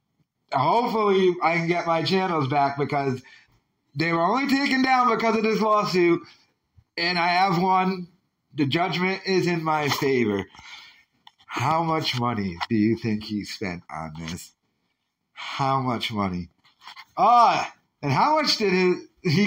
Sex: male